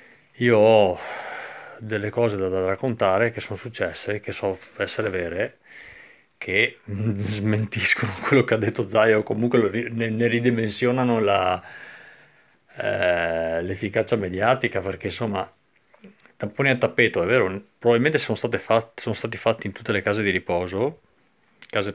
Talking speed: 140 wpm